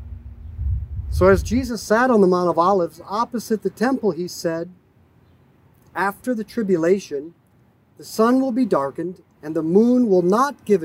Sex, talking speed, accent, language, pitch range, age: male, 155 wpm, American, English, 140-225 Hz, 50-69